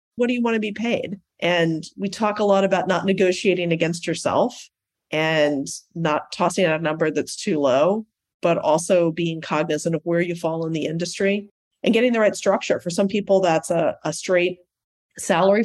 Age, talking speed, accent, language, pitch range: 30-49, 190 wpm, American, English, 165-210 Hz